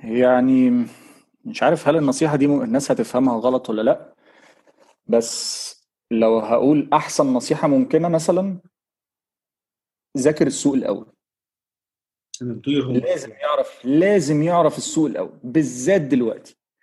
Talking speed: 105 wpm